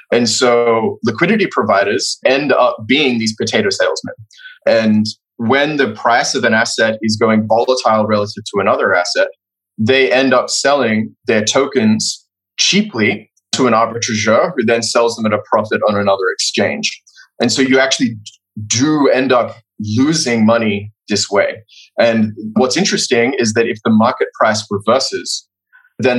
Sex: male